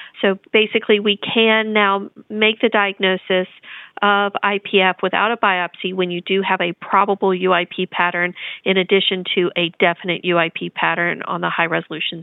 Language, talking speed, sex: English, 150 wpm, female